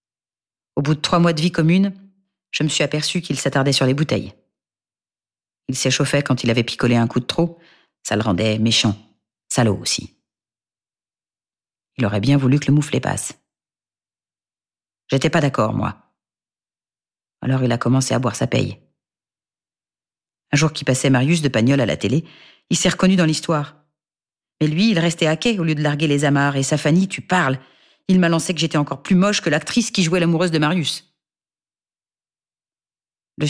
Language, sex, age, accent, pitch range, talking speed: French, female, 40-59, French, 120-160 Hz, 180 wpm